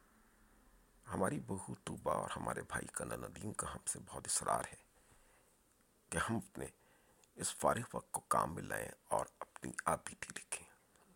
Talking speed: 145 wpm